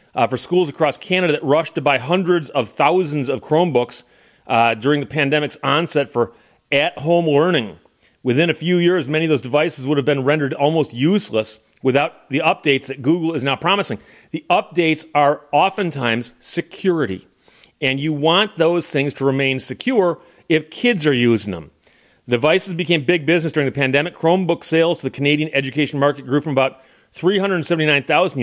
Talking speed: 170 wpm